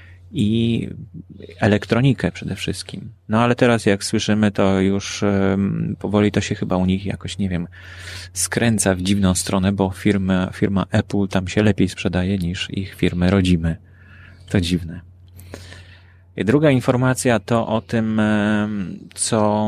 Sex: male